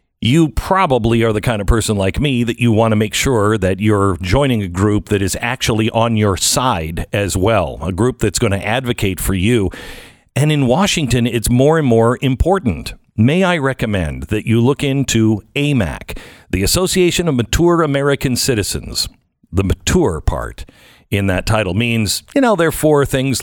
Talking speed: 175 wpm